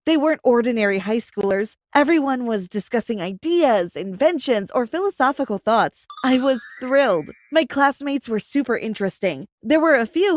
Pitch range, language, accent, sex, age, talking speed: 220-300 Hz, English, American, female, 20-39, 145 wpm